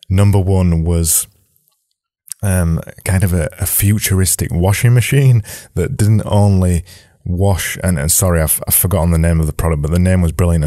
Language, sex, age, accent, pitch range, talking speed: English, male, 20-39, British, 85-100 Hz, 175 wpm